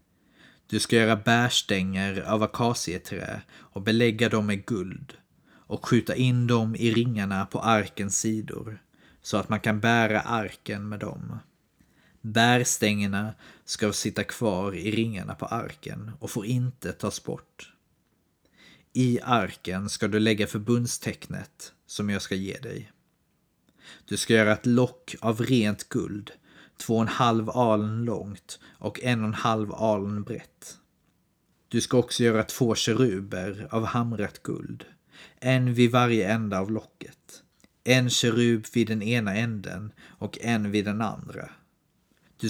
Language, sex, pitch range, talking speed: Swedish, male, 105-120 Hz, 140 wpm